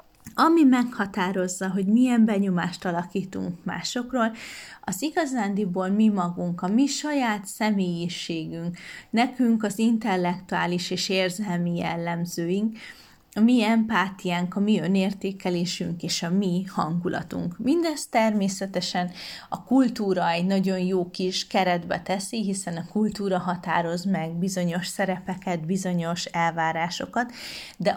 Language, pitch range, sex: Hungarian, 180-215 Hz, female